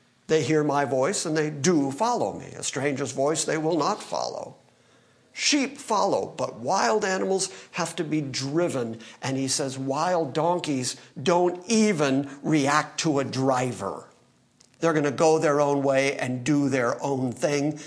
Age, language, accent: 50-69, English, American